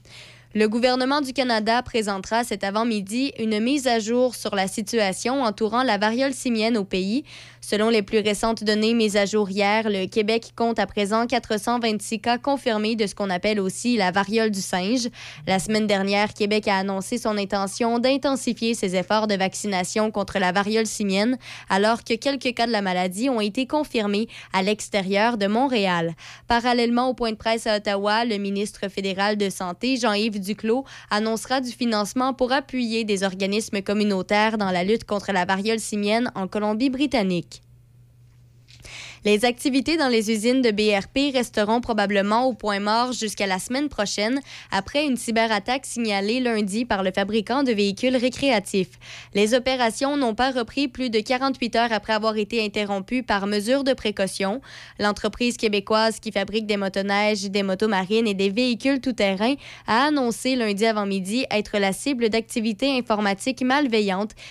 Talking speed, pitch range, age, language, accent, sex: 165 wpm, 200-240 Hz, 20-39, French, Canadian, female